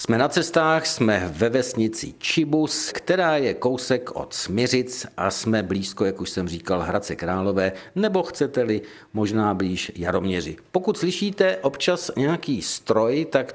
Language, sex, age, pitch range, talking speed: Czech, male, 50-69, 105-150 Hz, 140 wpm